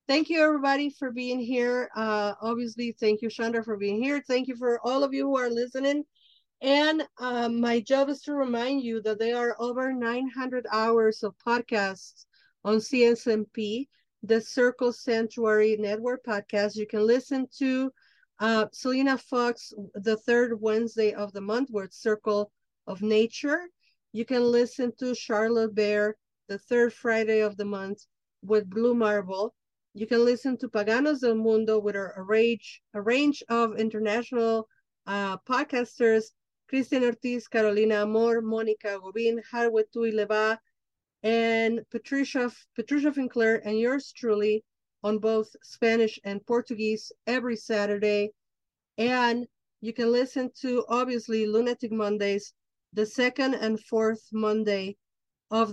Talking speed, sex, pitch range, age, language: 140 wpm, female, 215-250 Hz, 40-59, English